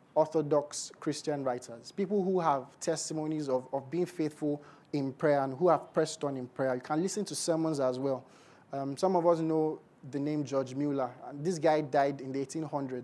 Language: English